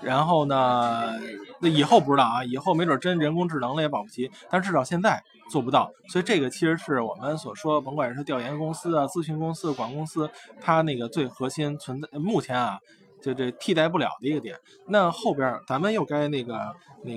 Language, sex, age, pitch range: Chinese, male, 20-39, 135-190 Hz